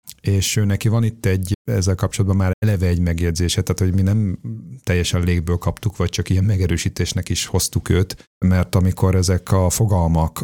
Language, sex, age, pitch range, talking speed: Hungarian, male, 40-59, 85-100 Hz, 175 wpm